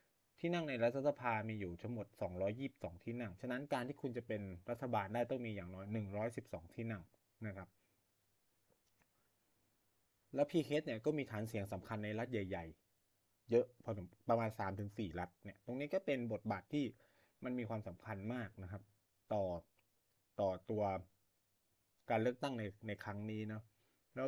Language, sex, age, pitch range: Thai, male, 20-39, 100-120 Hz